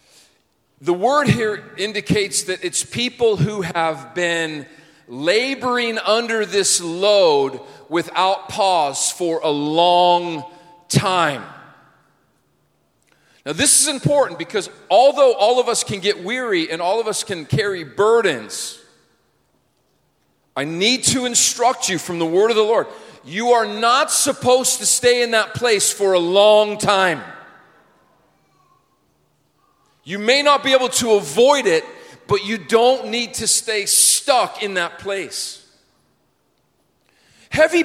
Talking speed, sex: 130 wpm, male